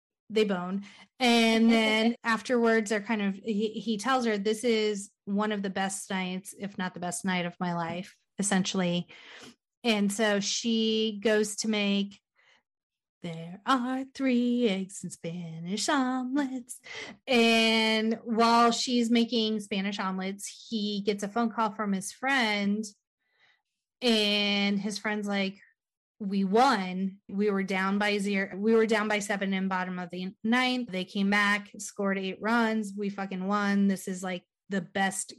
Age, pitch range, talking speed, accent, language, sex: 30-49, 195-235 Hz, 155 wpm, American, English, female